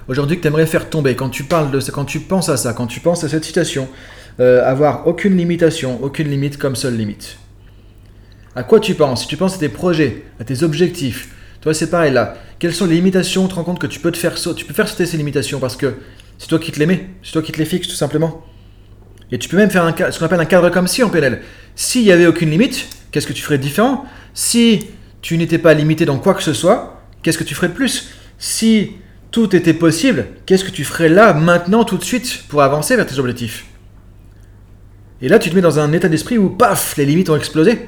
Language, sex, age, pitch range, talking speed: French, male, 30-49, 130-185 Hz, 255 wpm